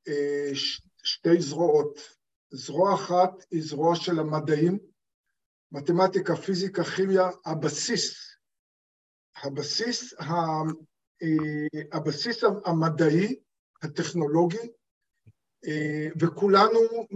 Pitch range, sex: 165-215 Hz, male